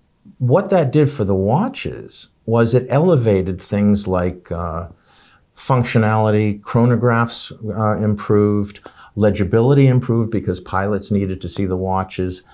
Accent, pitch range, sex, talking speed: American, 95-135 Hz, male, 120 wpm